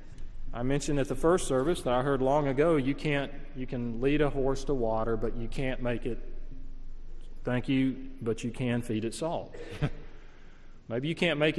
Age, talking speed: 40-59, 195 wpm